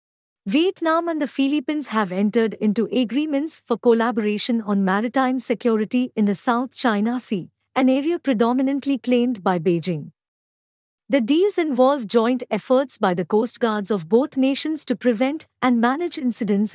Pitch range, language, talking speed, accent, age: 215-280 Hz, English, 145 wpm, Indian, 50-69